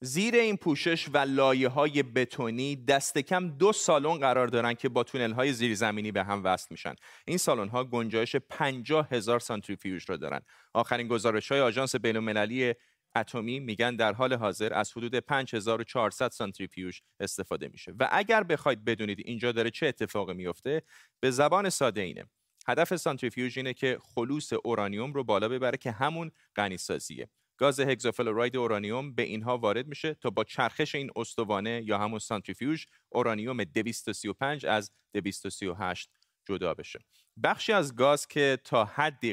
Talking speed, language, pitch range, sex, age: 140 wpm, Persian, 110-140 Hz, male, 30-49